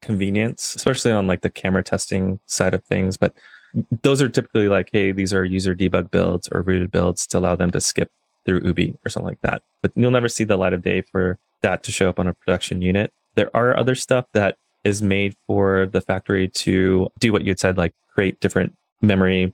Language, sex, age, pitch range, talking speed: English, male, 20-39, 90-100 Hz, 220 wpm